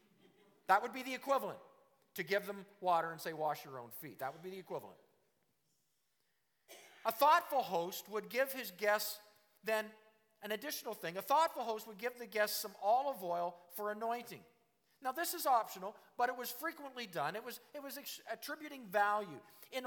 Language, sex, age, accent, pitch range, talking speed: English, male, 50-69, American, 170-245 Hz, 175 wpm